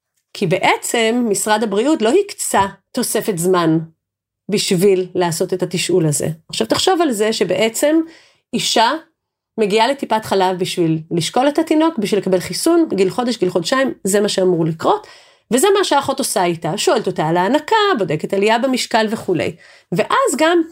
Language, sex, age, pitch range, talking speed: Hebrew, female, 30-49, 190-280 Hz, 150 wpm